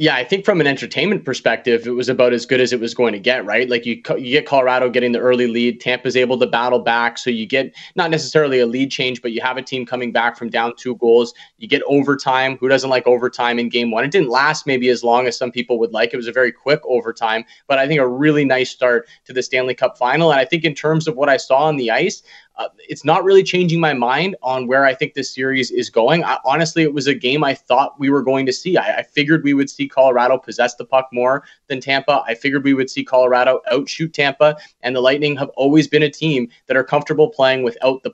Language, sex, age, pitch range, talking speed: English, male, 20-39, 125-145 Hz, 260 wpm